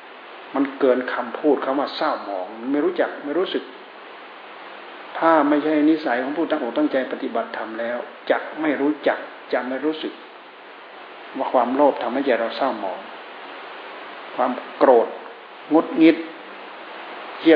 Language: Thai